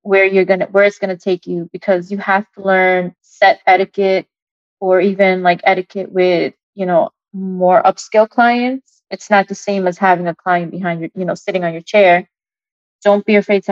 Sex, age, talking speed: female, 20-39, 205 wpm